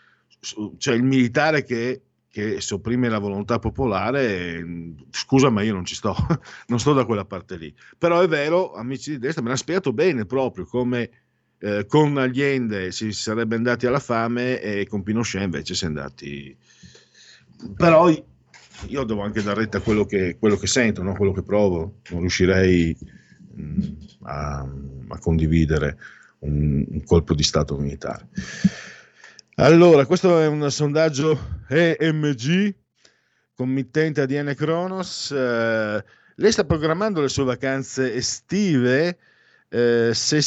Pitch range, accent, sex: 95-145 Hz, native, male